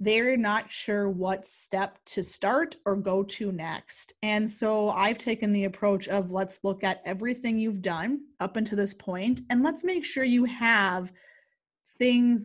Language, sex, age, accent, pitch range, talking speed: English, female, 20-39, American, 195-240 Hz, 170 wpm